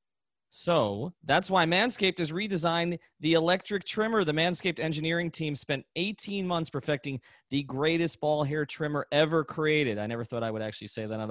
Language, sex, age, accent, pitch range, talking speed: English, male, 30-49, American, 125-165 Hz, 175 wpm